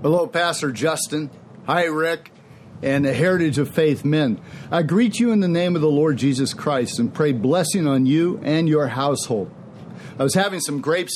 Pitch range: 140-195 Hz